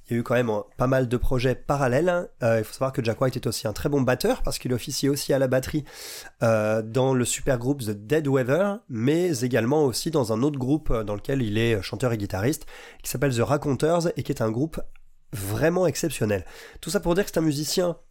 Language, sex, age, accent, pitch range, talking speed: French, male, 30-49, French, 120-155 Hz, 240 wpm